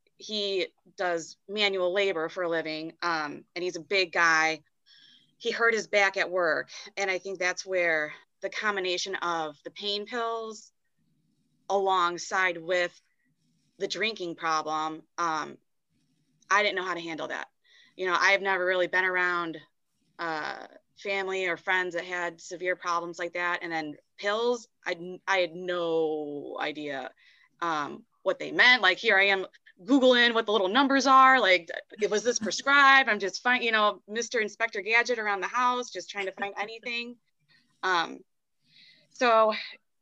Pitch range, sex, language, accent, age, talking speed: 175-215 Hz, female, English, American, 20-39, 160 wpm